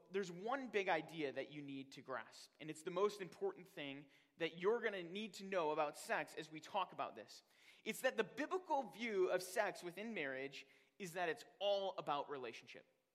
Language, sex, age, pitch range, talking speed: English, male, 30-49, 155-210 Hz, 200 wpm